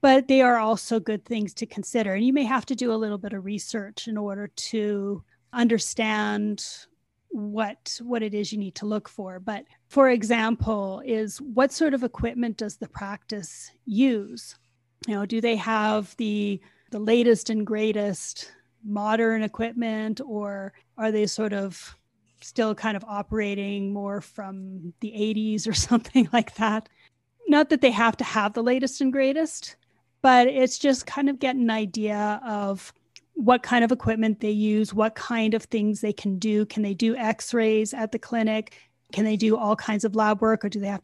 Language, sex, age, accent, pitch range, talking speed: English, female, 30-49, American, 210-230 Hz, 180 wpm